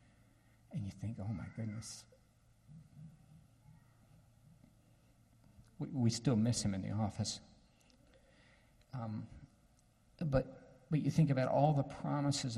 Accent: American